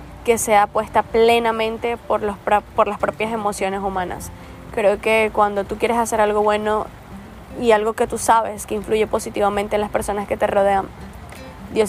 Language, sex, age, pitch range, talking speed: Spanish, female, 10-29, 195-225 Hz, 170 wpm